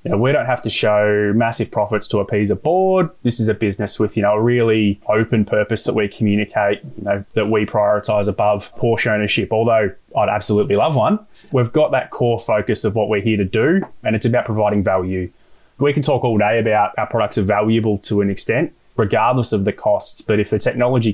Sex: male